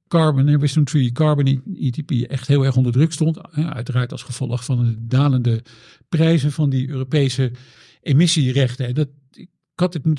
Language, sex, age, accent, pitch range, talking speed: Dutch, male, 50-69, Dutch, 130-170 Hz, 145 wpm